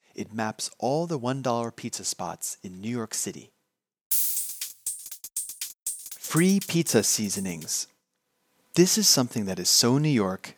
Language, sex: Japanese, male